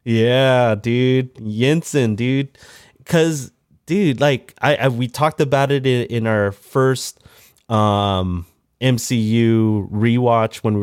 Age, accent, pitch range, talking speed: 30-49, American, 100-125 Hz, 120 wpm